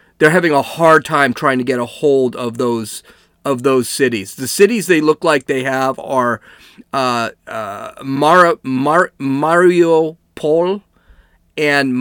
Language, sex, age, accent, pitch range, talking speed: English, male, 40-59, American, 135-180 Hz, 150 wpm